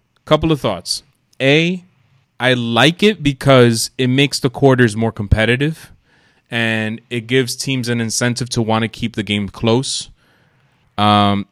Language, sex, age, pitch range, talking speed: English, male, 20-39, 105-125 Hz, 145 wpm